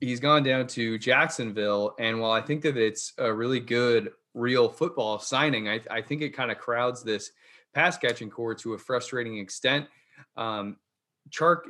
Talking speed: 175 wpm